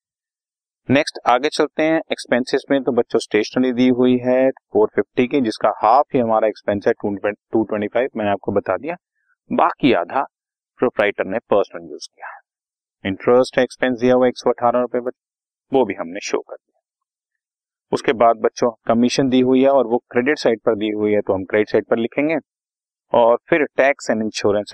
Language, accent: Hindi, native